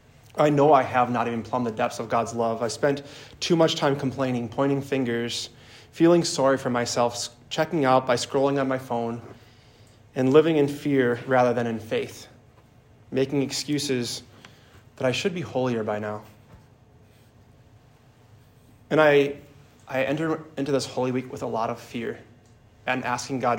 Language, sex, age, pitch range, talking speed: English, male, 20-39, 115-135 Hz, 165 wpm